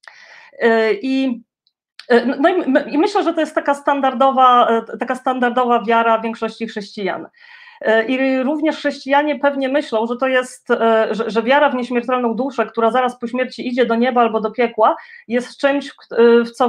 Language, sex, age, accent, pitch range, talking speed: Polish, female, 30-49, native, 230-280 Hz, 160 wpm